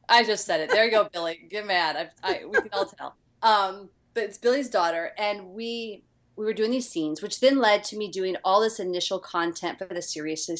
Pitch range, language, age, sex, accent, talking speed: 165-225 Hz, English, 30-49, female, American, 230 wpm